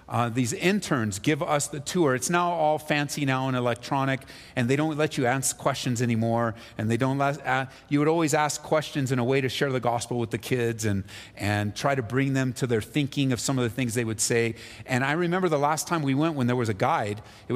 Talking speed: 250 wpm